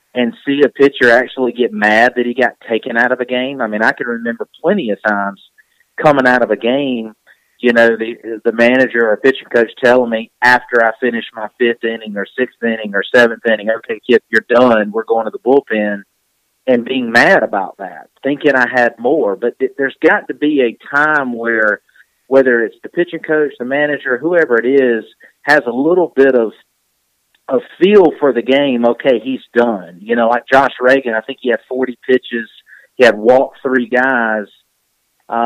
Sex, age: male, 40-59